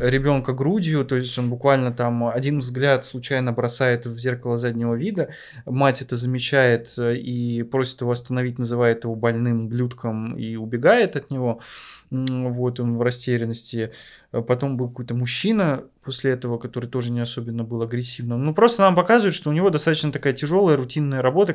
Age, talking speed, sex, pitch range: 20-39, 160 wpm, male, 120-140 Hz